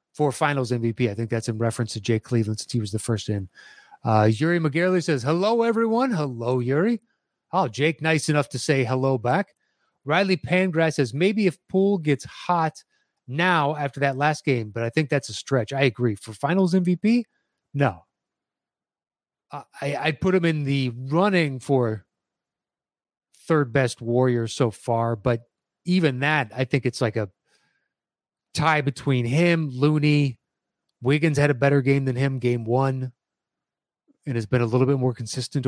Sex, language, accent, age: male, English, American, 30-49